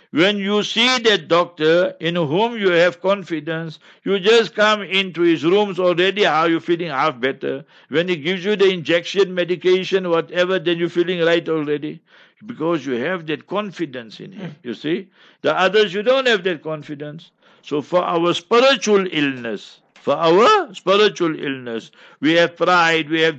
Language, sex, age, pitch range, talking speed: English, male, 60-79, 160-190 Hz, 165 wpm